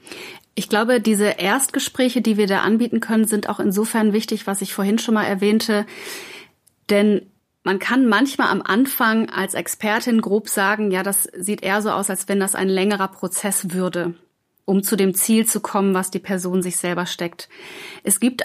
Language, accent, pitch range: German, German, 195-225 Hz